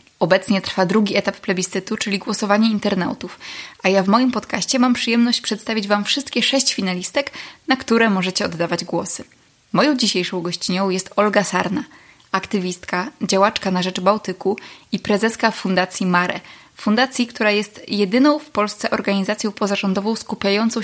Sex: female